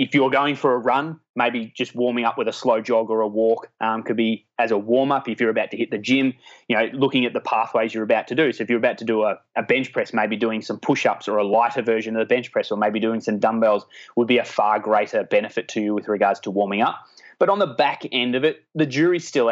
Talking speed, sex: 275 wpm, male